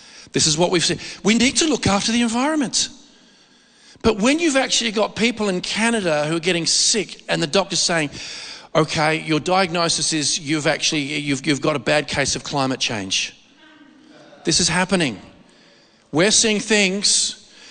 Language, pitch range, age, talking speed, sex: English, 150-200 Hz, 40-59, 165 wpm, male